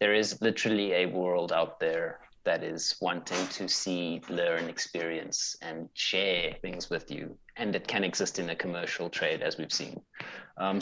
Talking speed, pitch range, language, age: 170 wpm, 90-115 Hz, English, 30-49